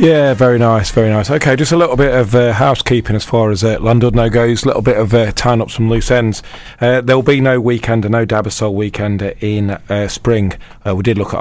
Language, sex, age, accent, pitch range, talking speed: English, male, 30-49, British, 95-115 Hz, 235 wpm